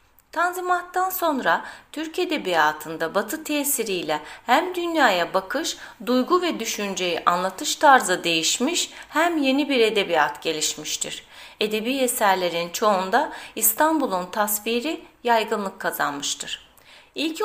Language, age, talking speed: Turkish, 30-49, 95 wpm